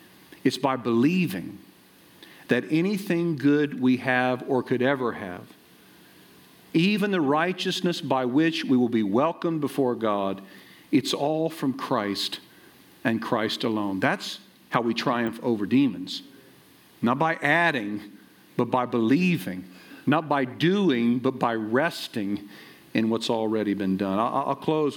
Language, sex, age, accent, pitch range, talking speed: English, male, 50-69, American, 115-155 Hz, 130 wpm